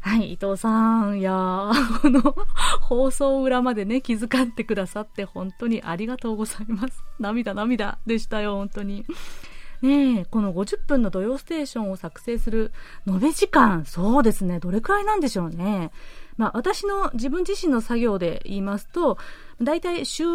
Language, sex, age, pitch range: Japanese, female, 30-49, 185-260 Hz